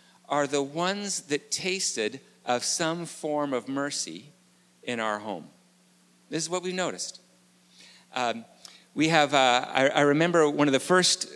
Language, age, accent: English, 50-69, American